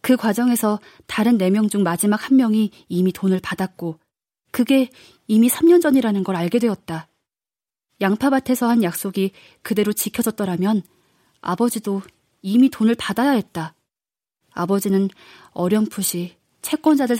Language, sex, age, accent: Korean, female, 20-39, native